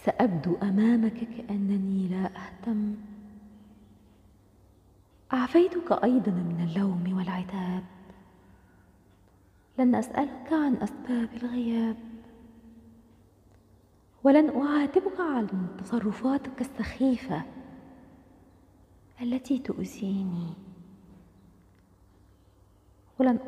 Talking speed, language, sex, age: 60 wpm, Arabic, female, 20-39